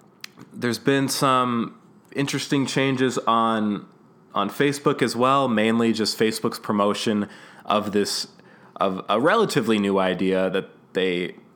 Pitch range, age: 95-115 Hz, 20-39